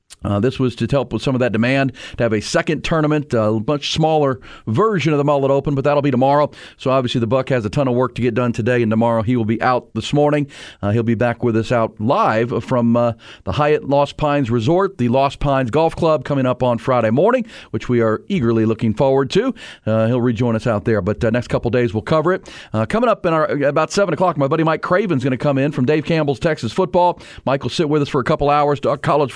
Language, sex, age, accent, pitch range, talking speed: English, male, 40-59, American, 120-150 Hz, 255 wpm